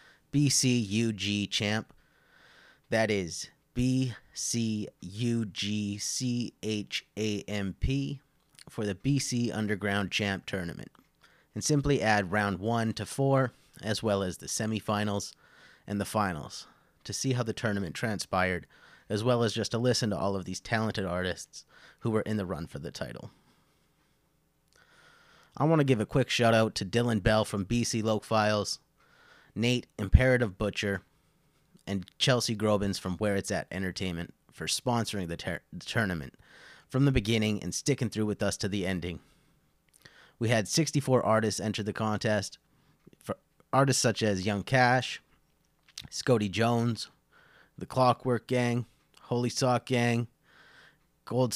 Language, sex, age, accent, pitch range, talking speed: English, male, 30-49, American, 100-125 Hz, 135 wpm